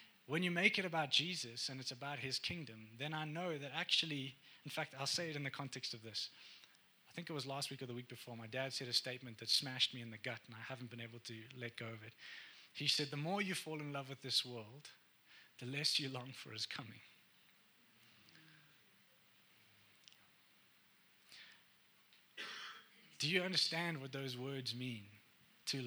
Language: English